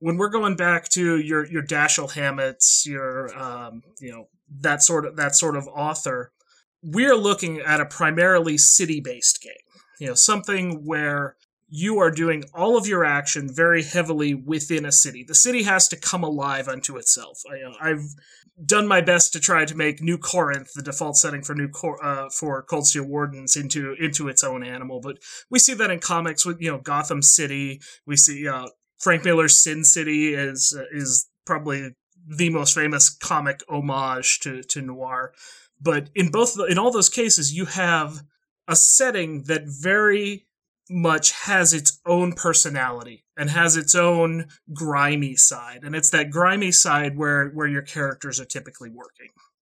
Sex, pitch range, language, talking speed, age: male, 140-175 Hz, English, 175 wpm, 30-49